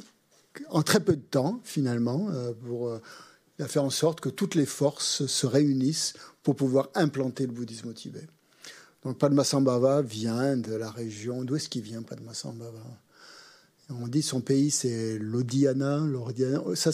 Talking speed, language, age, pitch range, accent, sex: 145 wpm, French, 50-69, 120-150 Hz, French, male